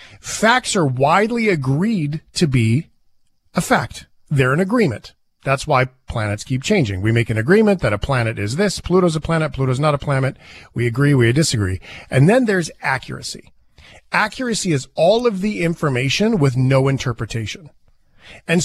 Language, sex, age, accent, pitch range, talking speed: English, male, 40-59, American, 130-190 Hz, 160 wpm